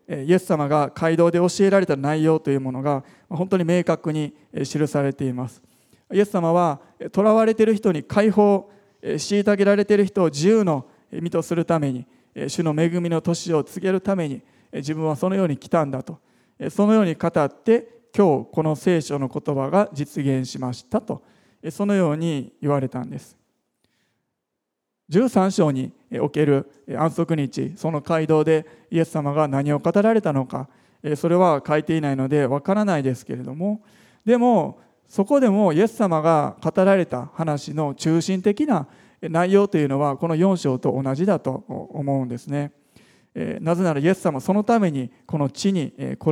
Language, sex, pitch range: Japanese, male, 145-190 Hz